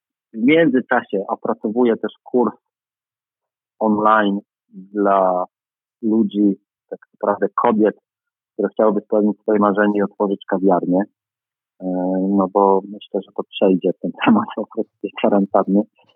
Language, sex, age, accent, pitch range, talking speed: Polish, male, 40-59, native, 95-105 Hz, 110 wpm